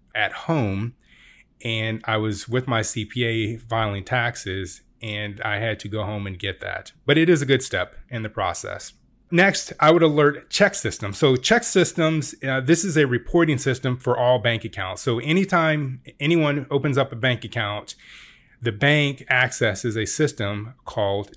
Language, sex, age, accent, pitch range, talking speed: English, male, 30-49, American, 110-140 Hz, 170 wpm